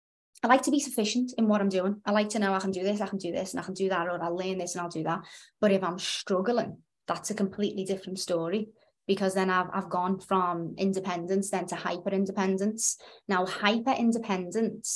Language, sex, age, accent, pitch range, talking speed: English, female, 20-39, British, 175-205 Hz, 220 wpm